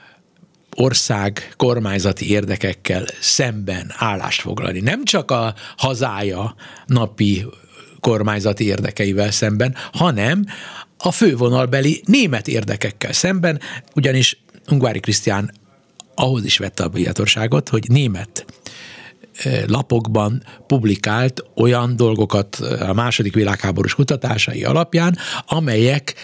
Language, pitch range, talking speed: Hungarian, 100-135 Hz, 90 wpm